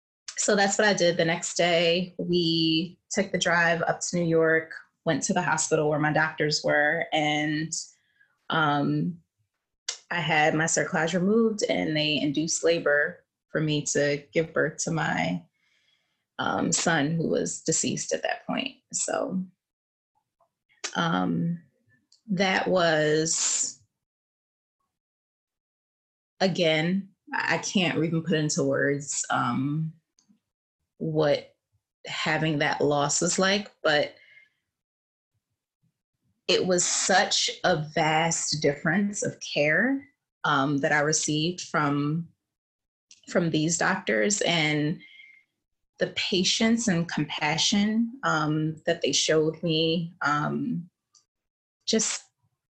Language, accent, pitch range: English, American, 150-190 Hz